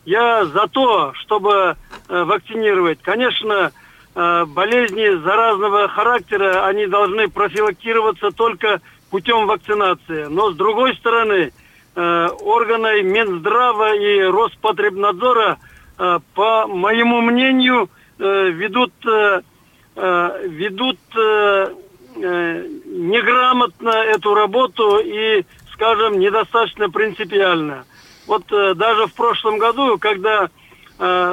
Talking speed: 80 wpm